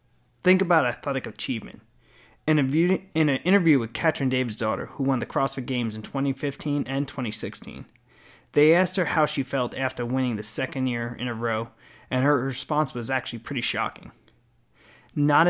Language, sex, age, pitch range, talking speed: English, male, 30-49, 120-150 Hz, 165 wpm